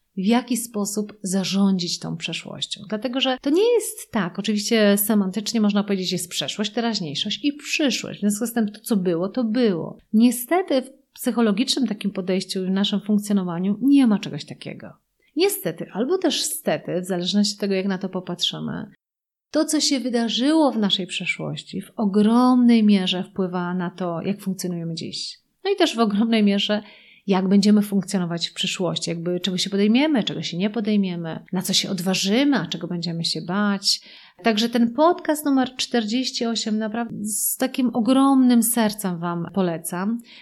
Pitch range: 190-235 Hz